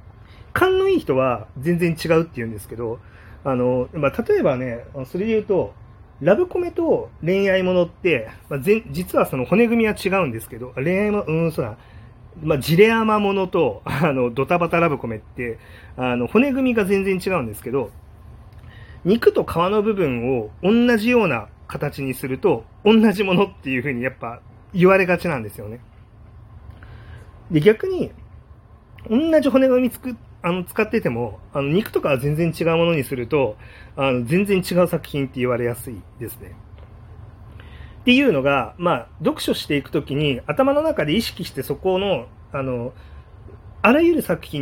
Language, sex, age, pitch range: Japanese, male, 30-49, 120-200 Hz